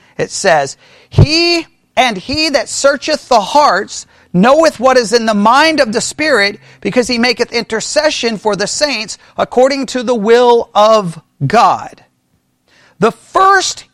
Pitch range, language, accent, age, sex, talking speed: 185-250 Hz, English, American, 40-59, male, 140 wpm